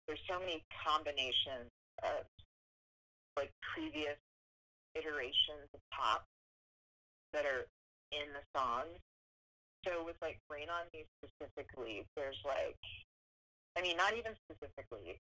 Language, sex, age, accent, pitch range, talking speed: English, female, 30-49, American, 95-155 Hz, 115 wpm